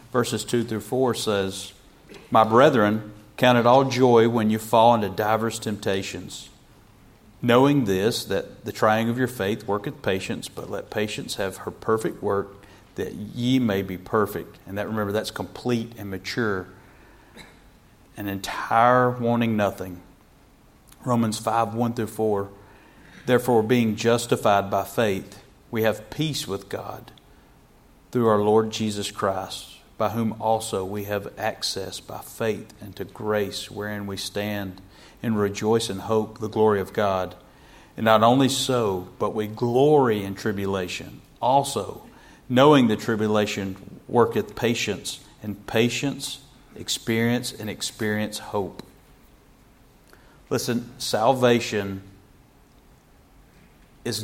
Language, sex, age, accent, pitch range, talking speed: English, male, 40-59, American, 100-120 Hz, 130 wpm